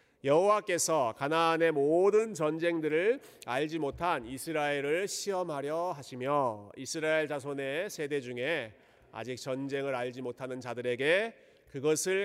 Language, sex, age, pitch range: Korean, male, 40-59, 135-200 Hz